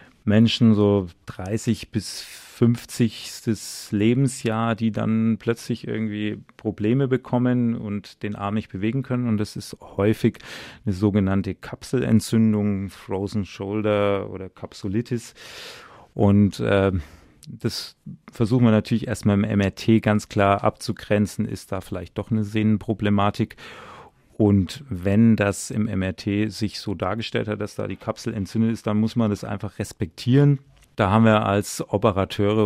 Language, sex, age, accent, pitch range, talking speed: German, male, 30-49, German, 100-115 Hz, 135 wpm